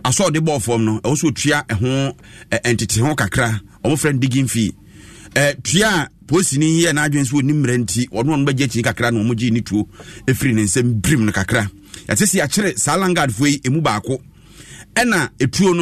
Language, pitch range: English, 115-165 Hz